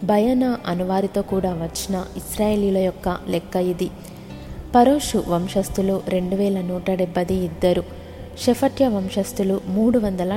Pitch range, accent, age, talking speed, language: 185-210 Hz, native, 20-39, 110 wpm, Telugu